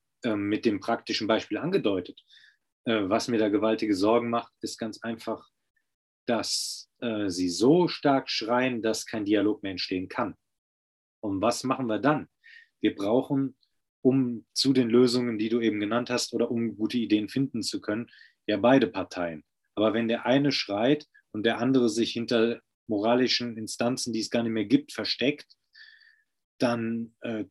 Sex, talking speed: male, 155 wpm